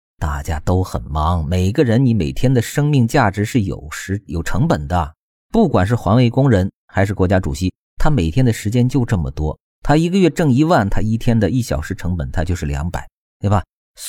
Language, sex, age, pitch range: Chinese, male, 50-69, 90-125 Hz